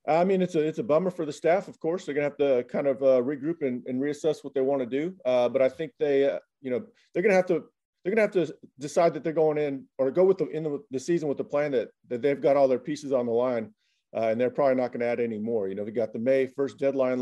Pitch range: 125-150 Hz